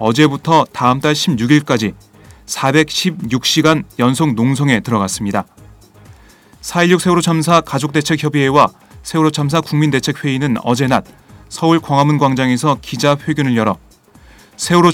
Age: 30-49